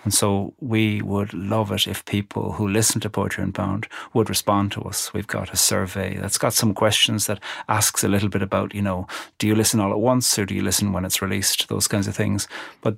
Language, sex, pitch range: English, male, 100-115 Hz